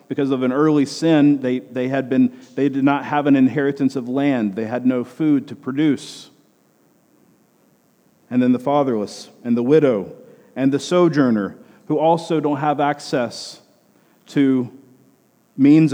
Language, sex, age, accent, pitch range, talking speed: English, male, 40-59, American, 140-175 Hz, 150 wpm